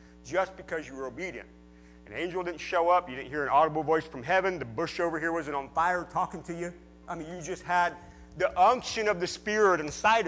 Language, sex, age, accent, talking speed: English, male, 40-59, American, 230 wpm